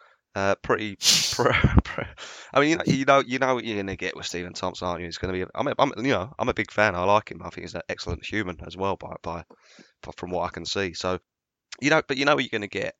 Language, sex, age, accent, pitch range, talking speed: English, male, 20-39, British, 90-115 Hz, 280 wpm